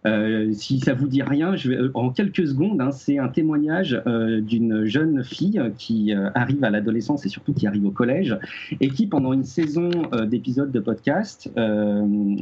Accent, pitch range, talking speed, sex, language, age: French, 120-150 Hz, 200 wpm, male, French, 40-59